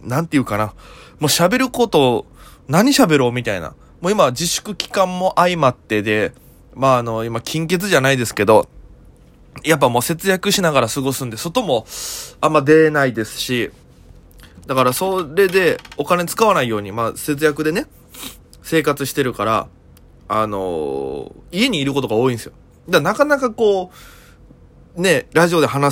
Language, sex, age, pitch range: Japanese, male, 20-39, 120-185 Hz